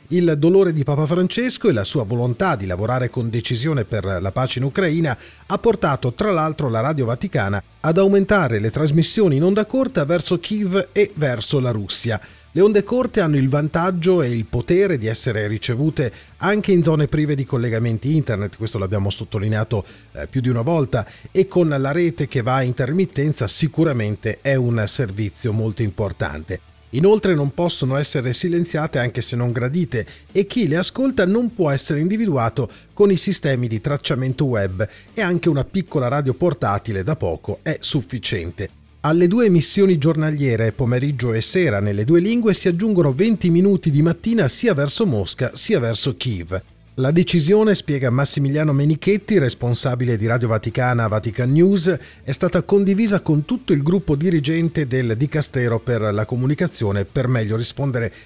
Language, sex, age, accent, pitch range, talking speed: Italian, male, 40-59, native, 115-175 Hz, 165 wpm